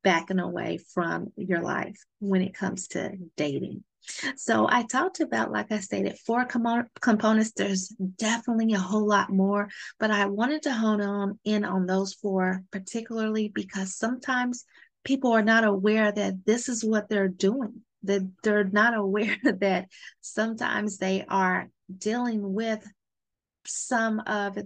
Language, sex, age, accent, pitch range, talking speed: English, female, 30-49, American, 195-220 Hz, 145 wpm